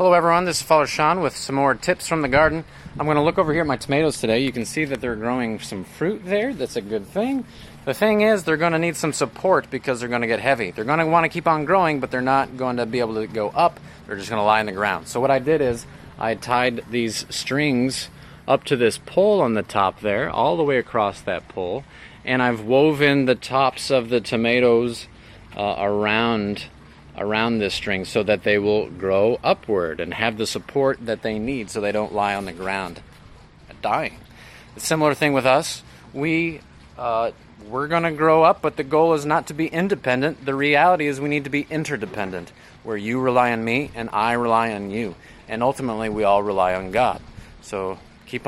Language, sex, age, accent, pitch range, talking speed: English, male, 30-49, American, 110-155 Hz, 215 wpm